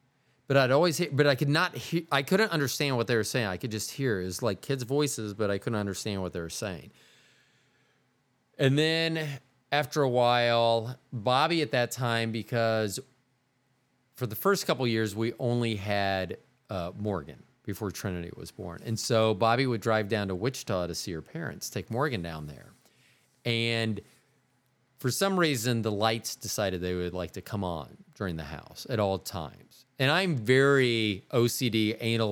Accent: American